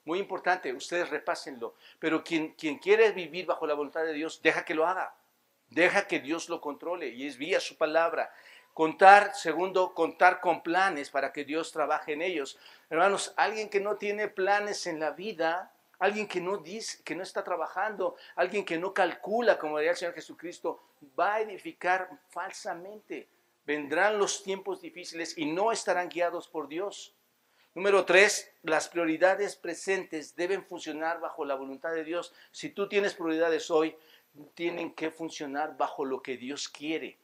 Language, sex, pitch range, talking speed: Spanish, male, 150-195 Hz, 170 wpm